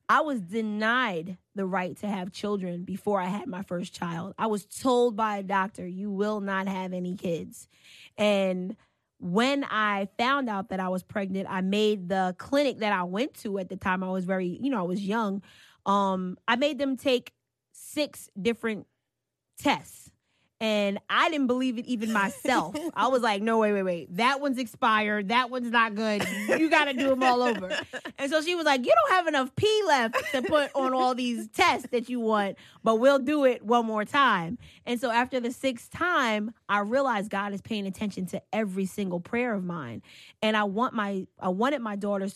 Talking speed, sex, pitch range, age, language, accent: 200 wpm, female, 190-245 Hz, 20-39, English, American